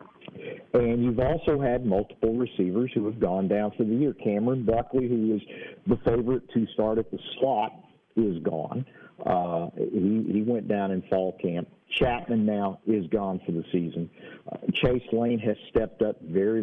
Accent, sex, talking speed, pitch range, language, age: American, male, 170 wpm, 95-110 Hz, English, 50-69